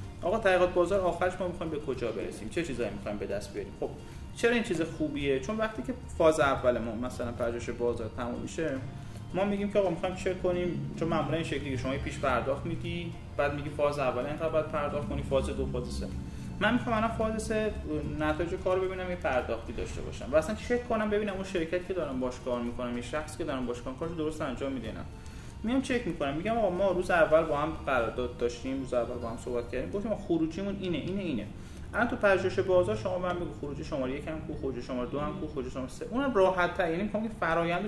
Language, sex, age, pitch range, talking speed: Persian, male, 30-49, 125-185 Hz, 210 wpm